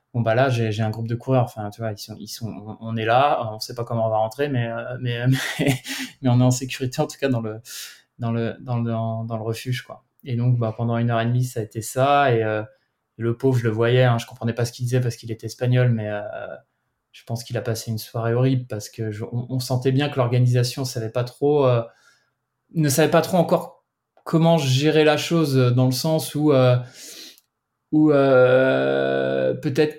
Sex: male